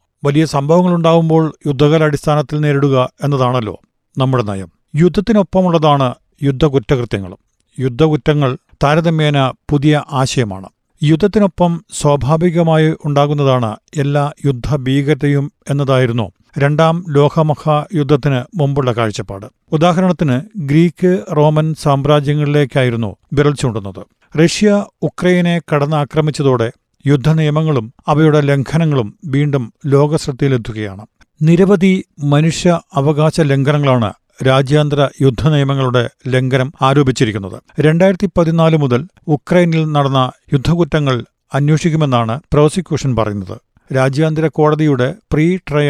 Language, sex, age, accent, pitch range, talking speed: Malayalam, male, 50-69, native, 130-160 Hz, 75 wpm